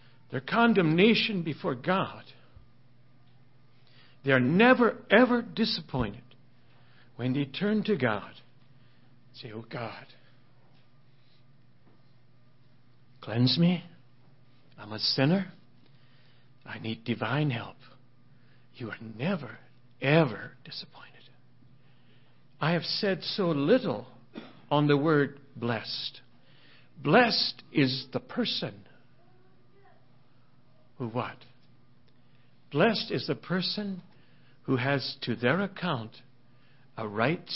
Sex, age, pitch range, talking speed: male, 60-79, 120-140 Hz, 90 wpm